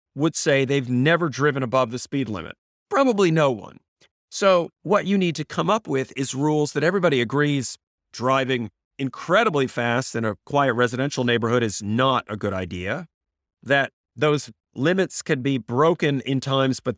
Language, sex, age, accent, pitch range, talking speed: English, male, 40-59, American, 120-150 Hz, 165 wpm